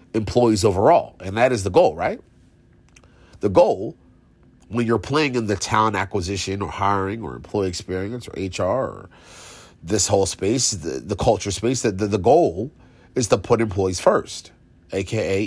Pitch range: 95-120 Hz